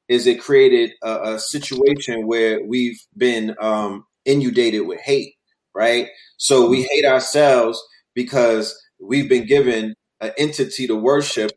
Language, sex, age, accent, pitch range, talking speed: English, male, 30-49, American, 130-190 Hz, 135 wpm